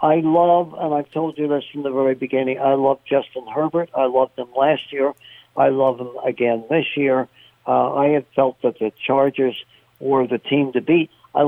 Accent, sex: American, male